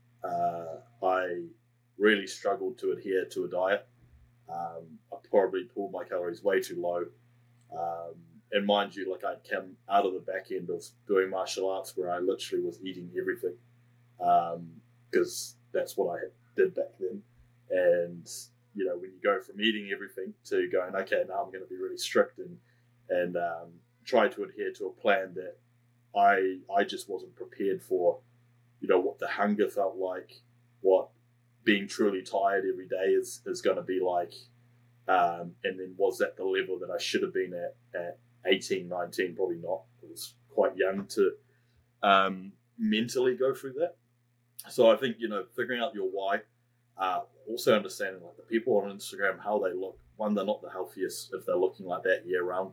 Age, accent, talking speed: 20-39, Australian, 185 wpm